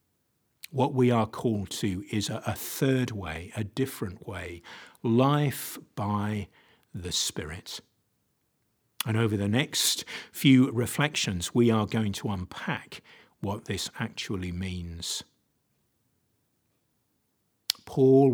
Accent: British